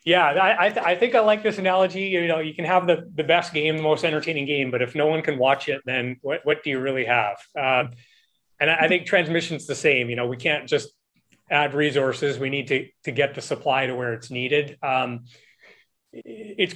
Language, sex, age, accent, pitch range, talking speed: English, male, 30-49, American, 130-155 Hz, 230 wpm